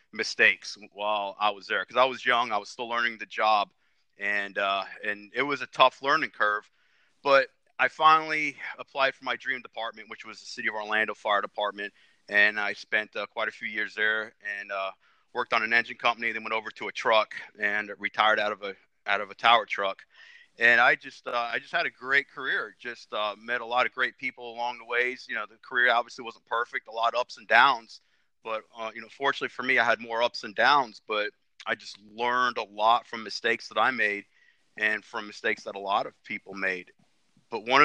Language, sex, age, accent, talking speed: English, male, 30-49, American, 225 wpm